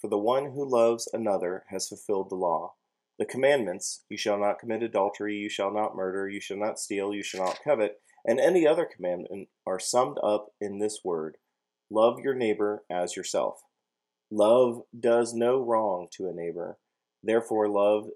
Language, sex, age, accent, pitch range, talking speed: English, male, 30-49, American, 100-115 Hz, 175 wpm